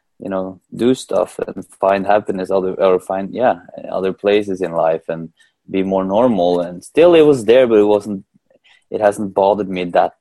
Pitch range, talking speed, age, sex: 85-95 Hz, 190 wpm, 20-39, male